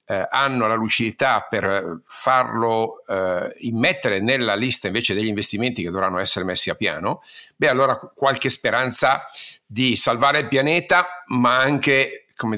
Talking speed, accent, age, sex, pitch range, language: 140 wpm, native, 50-69, male, 105-130 Hz, Italian